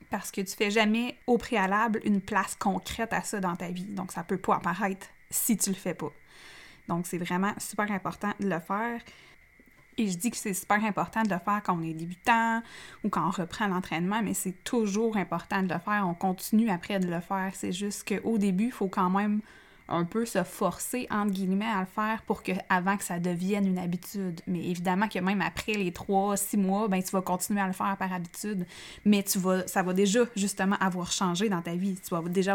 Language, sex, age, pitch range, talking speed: French, female, 20-39, 185-220 Hz, 230 wpm